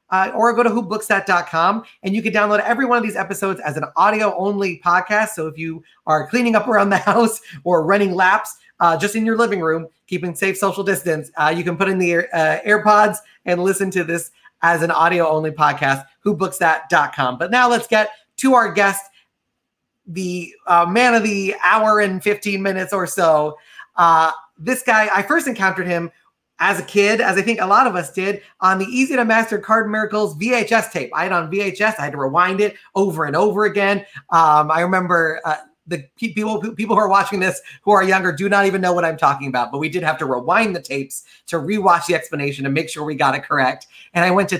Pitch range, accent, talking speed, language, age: 170-210 Hz, American, 220 wpm, English, 30-49